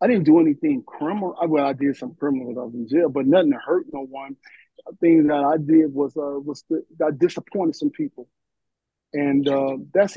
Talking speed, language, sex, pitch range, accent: 210 wpm, English, male, 140-170 Hz, American